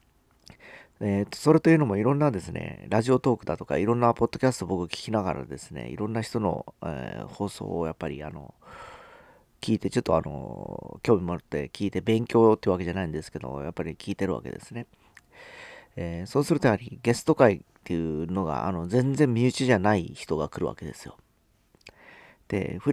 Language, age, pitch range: Japanese, 40-59, 90-120 Hz